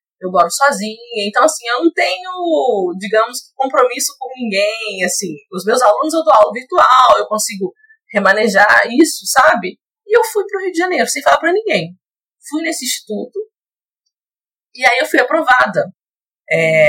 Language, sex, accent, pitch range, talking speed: Portuguese, female, Brazilian, 200-330 Hz, 165 wpm